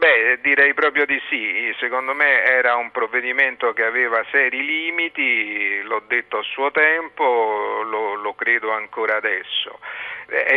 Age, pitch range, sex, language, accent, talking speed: 50-69, 125-155 Hz, male, Italian, native, 140 wpm